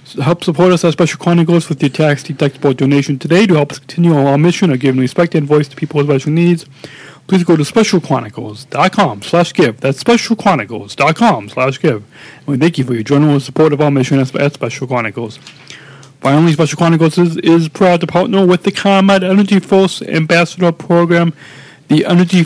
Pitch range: 135-175 Hz